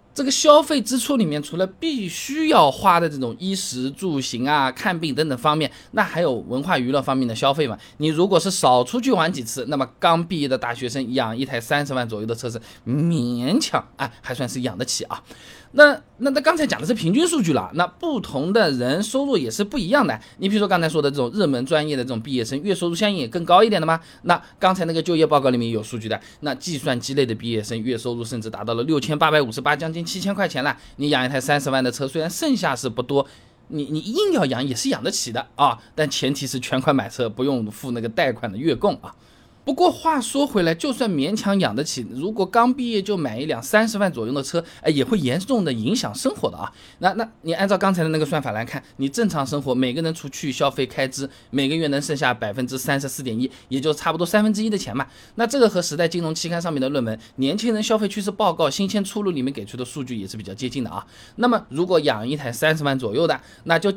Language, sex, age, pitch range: Chinese, male, 20-39, 130-200 Hz